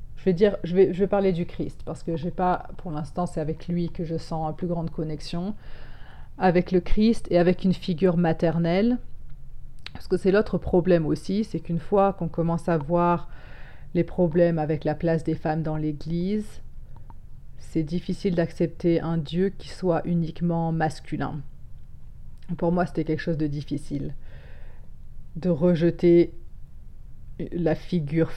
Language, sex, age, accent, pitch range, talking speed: French, female, 30-49, French, 160-180 Hz, 160 wpm